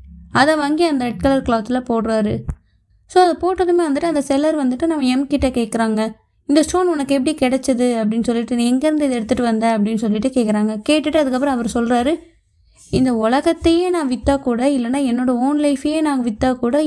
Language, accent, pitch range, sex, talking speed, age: Tamil, native, 235-290 Hz, female, 170 wpm, 20-39